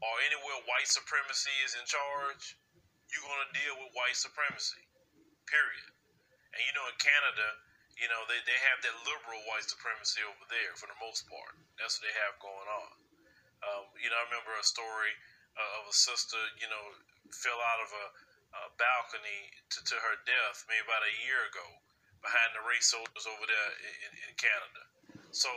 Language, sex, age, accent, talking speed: English, male, 30-49, American, 185 wpm